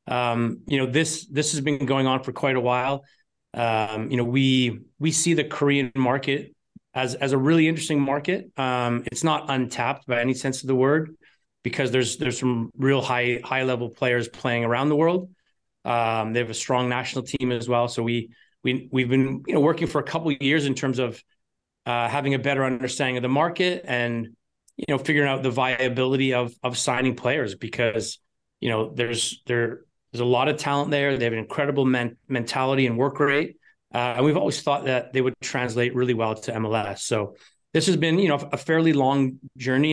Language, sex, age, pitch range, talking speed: English, male, 30-49, 125-145 Hz, 205 wpm